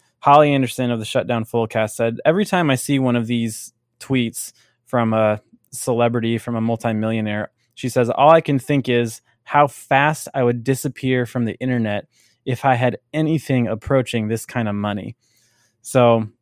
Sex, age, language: male, 20-39, English